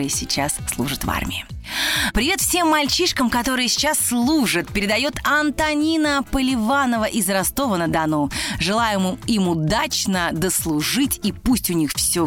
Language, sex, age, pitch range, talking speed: Russian, female, 30-49, 170-245 Hz, 115 wpm